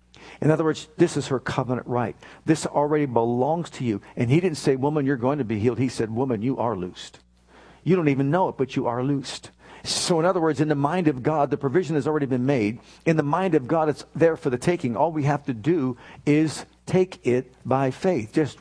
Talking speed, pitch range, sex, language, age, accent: 240 wpm, 125-155 Hz, male, English, 50-69, American